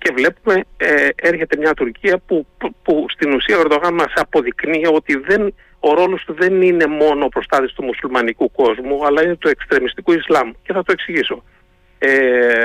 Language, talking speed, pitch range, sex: Greek, 180 wpm, 150-220 Hz, male